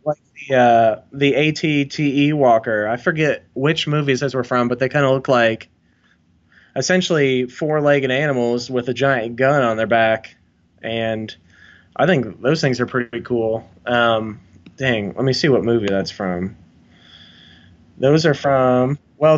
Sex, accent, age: male, American, 20-39